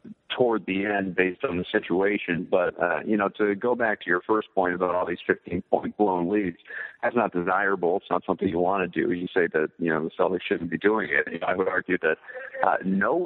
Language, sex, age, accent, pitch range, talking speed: English, male, 50-69, American, 95-110 Hz, 250 wpm